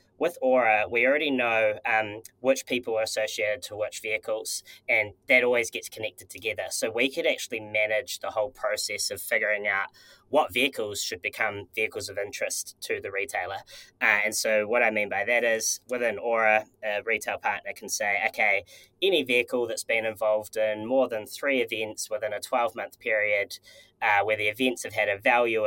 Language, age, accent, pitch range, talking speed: English, 10-29, Australian, 110-130 Hz, 185 wpm